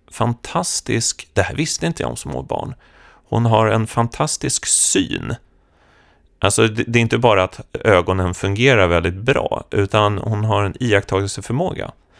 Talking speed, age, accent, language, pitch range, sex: 140 wpm, 30-49, native, Swedish, 85-125 Hz, male